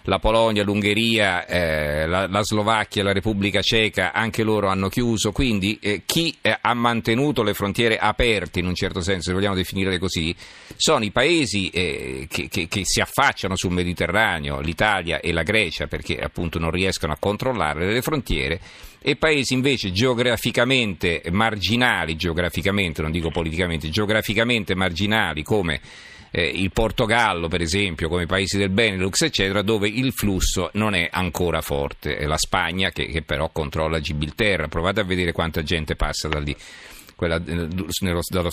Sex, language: male, Italian